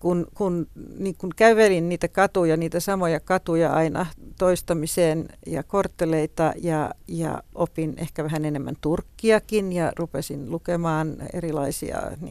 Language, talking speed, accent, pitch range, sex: Finnish, 105 wpm, native, 150-180 Hz, female